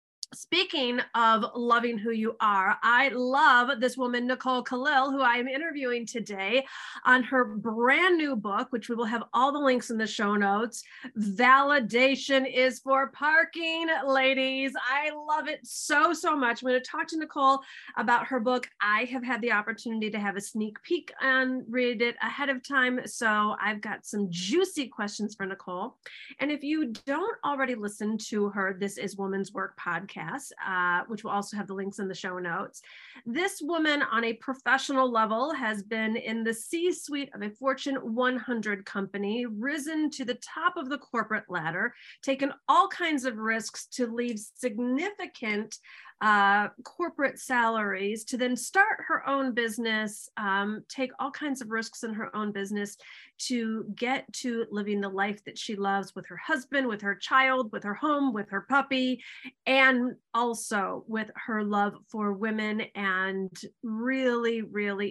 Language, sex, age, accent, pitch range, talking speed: English, female, 30-49, American, 210-270 Hz, 170 wpm